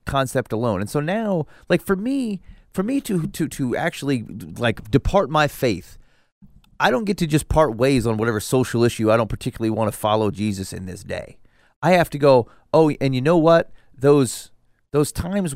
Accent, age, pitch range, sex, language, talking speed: American, 30-49, 110-155 Hz, male, English, 195 wpm